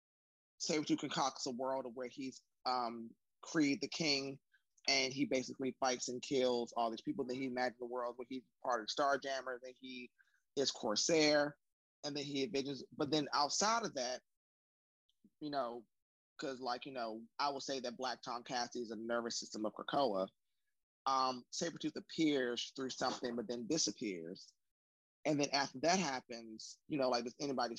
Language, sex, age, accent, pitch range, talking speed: English, male, 20-39, American, 115-140 Hz, 170 wpm